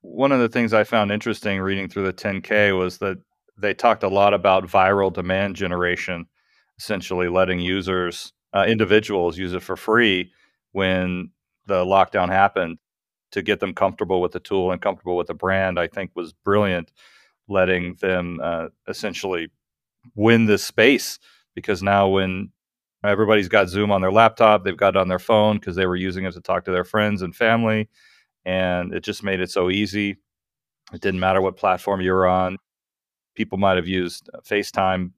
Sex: male